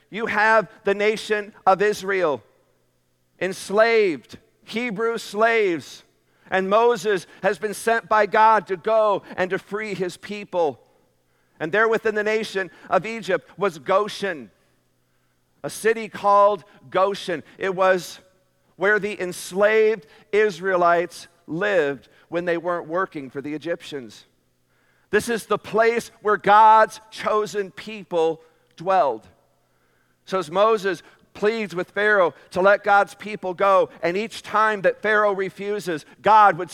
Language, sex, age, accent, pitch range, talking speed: English, male, 50-69, American, 180-220 Hz, 125 wpm